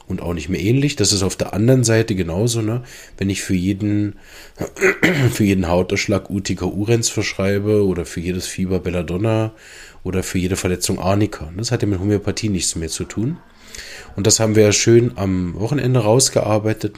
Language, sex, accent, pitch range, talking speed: German, male, German, 90-105 Hz, 180 wpm